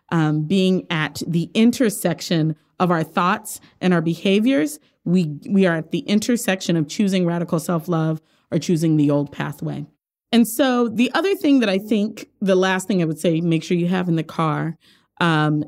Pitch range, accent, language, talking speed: 165-220 Hz, American, English, 185 wpm